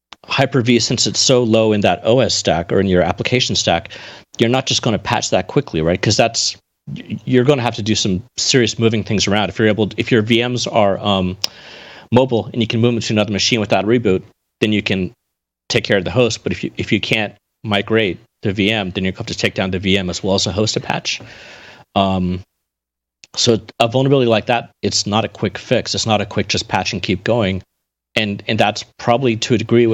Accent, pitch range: American, 90-115 Hz